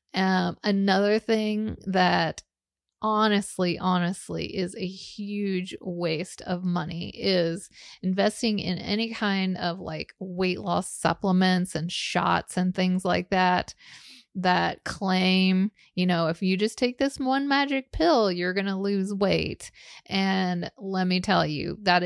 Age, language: 30-49, English